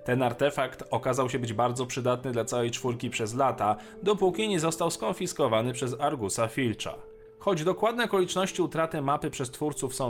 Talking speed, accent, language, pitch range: 160 wpm, native, Polish, 120-160 Hz